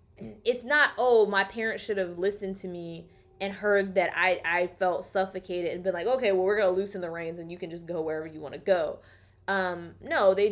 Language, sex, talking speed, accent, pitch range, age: English, female, 235 wpm, American, 180-225 Hz, 20-39